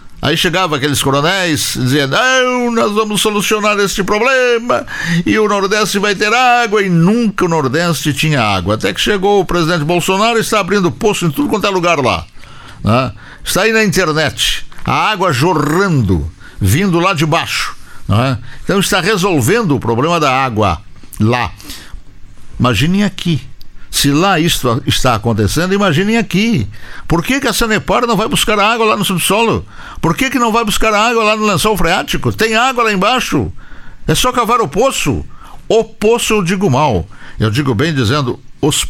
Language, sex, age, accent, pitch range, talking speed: Portuguese, male, 60-79, Brazilian, 130-210 Hz, 170 wpm